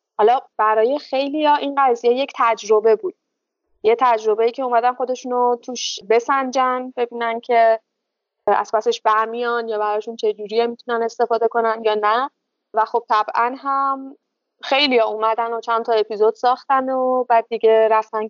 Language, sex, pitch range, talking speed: Arabic, female, 220-270 Hz, 150 wpm